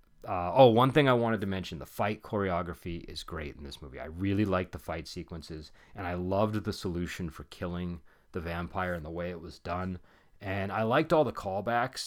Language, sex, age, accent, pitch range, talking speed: English, male, 30-49, American, 80-100 Hz, 215 wpm